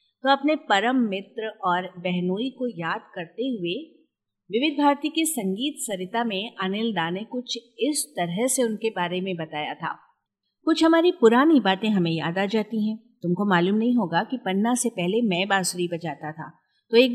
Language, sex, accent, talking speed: Hindi, female, native, 175 wpm